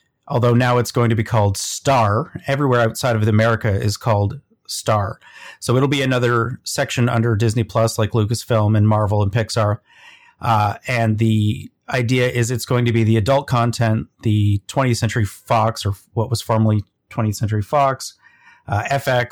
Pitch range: 110-135 Hz